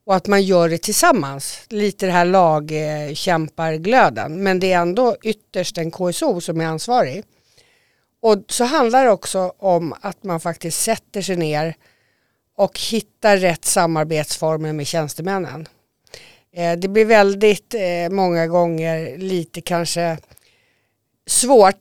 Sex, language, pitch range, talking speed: female, Swedish, 165-210 Hz, 135 wpm